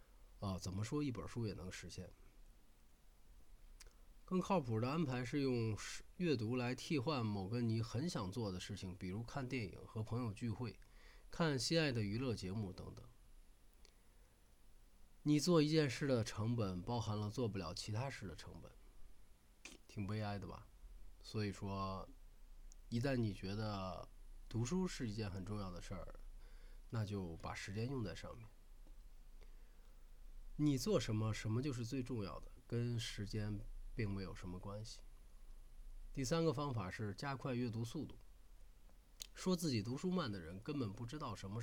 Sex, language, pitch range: male, Chinese, 95-130 Hz